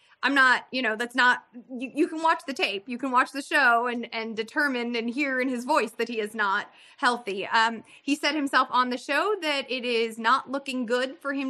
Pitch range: 235-285 Hz